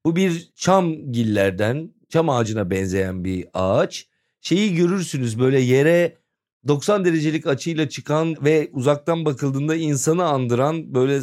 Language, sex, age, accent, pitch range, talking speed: Turkish, male, 40-59, native, 115-170 Hz, 120 wpm